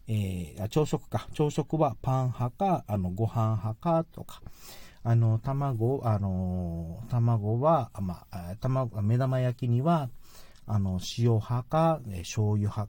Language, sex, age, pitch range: Japanese, male, 40-59, 105-150 Hz